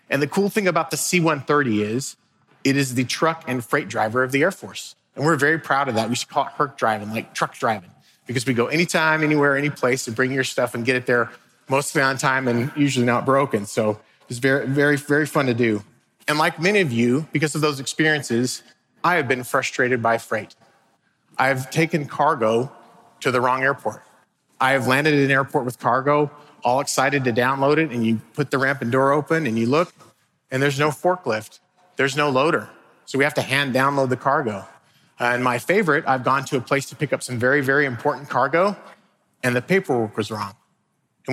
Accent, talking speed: American, 215 wpm